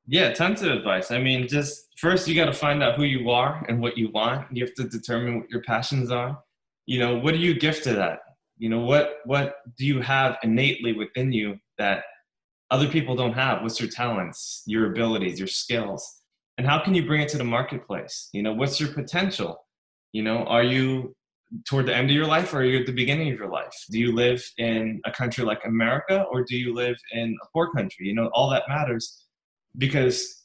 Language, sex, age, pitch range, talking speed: English, male, 20-39, 115-145 Hz, 225 wpm